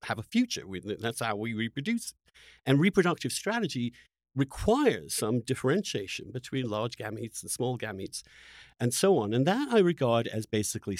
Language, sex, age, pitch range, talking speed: English, male, 50-69, 105-145 Hz, 160 wpm